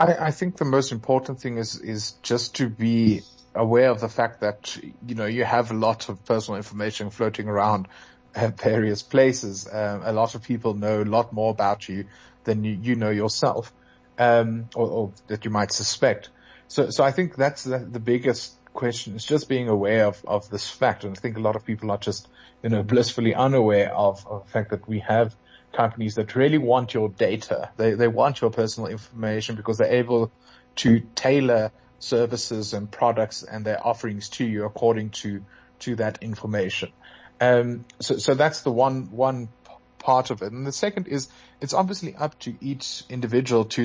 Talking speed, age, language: 190 wpm, 30-49, English